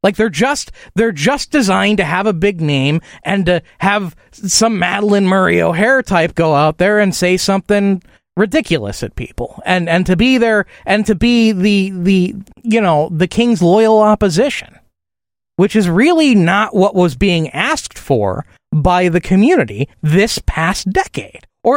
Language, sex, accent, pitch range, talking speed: English, male, American, 180-255 Hz, 165 wpm